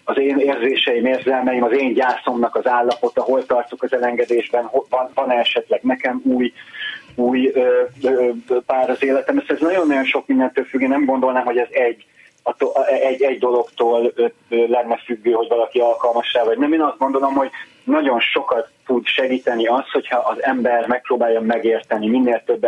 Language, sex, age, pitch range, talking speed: Hungarian, male, 30-49, 115-145 Hz, 150 wpm